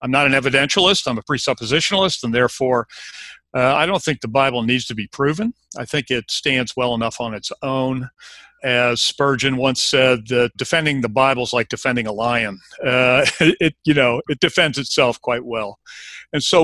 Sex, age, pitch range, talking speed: male, 50-69, 120-145 Hz, 190 wpm